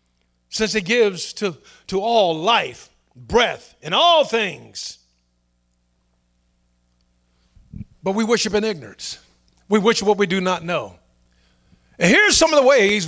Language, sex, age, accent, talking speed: English, male, 50-69, American, 135 wpm